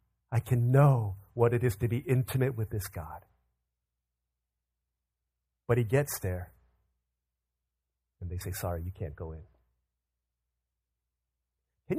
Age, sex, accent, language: 40-59, male, American, English